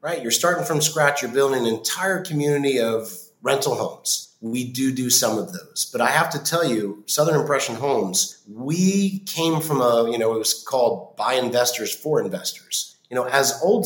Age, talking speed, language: 30-49, 195 wpm, English